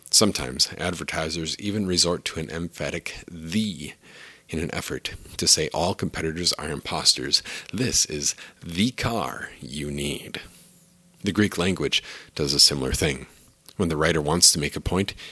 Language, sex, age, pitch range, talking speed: English, male, 40-59, 80-100 Hz, 150 wpm